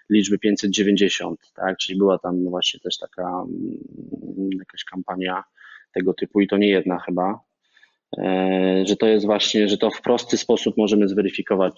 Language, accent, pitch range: Polish, native, 100-125 Hz